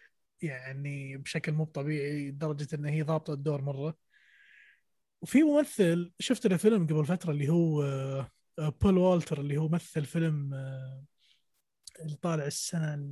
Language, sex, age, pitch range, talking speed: Arabic, male, 20-39, 150-190 Hz, 130 wpm